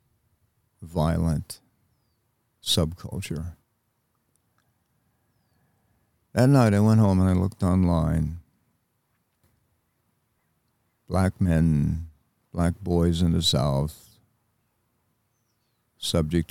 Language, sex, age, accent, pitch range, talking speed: English, male, 60-79, American, 85-115 Hz, 70 wpm